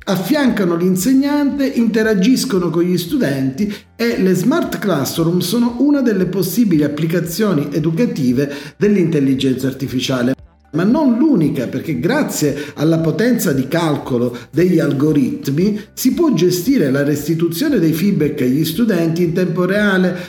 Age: 50-69